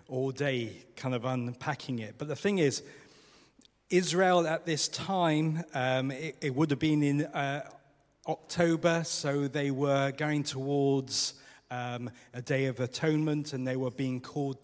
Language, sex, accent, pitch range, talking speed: English, male, British, 130-155 Hz, 155 wpm